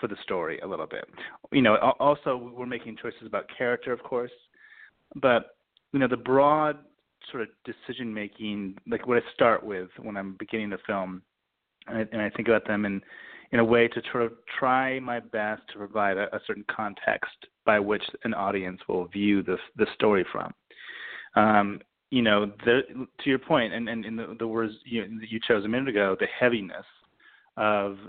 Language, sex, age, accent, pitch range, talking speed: English, male, 30-49, American, 100-120 Hz, 195 wpm